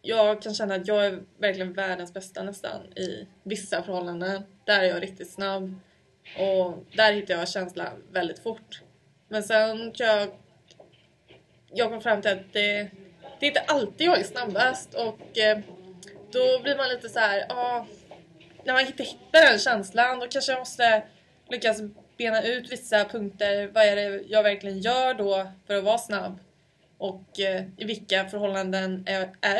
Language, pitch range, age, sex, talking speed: Swedish, 195-220 Hz, 20-39, female, 170 wpm